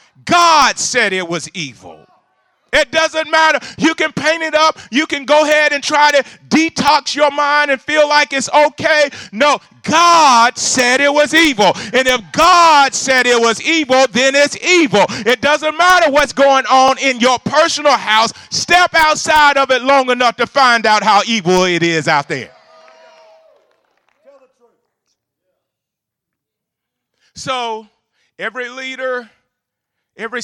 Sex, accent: male, American